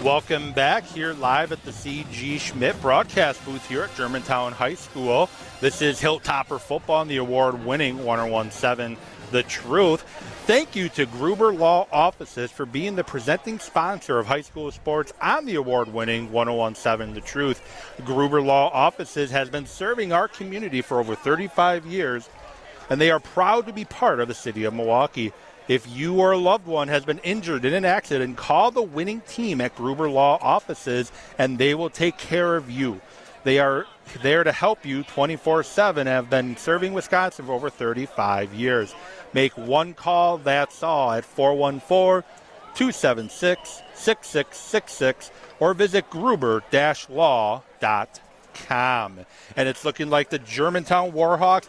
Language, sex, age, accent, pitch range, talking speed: English, male, 40-59, American, 125-170 Hz, 150 wpm